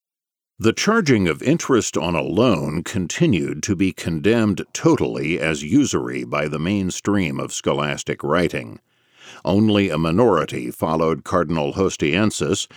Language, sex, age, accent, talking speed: English, male, 50-69, American, 120 wpm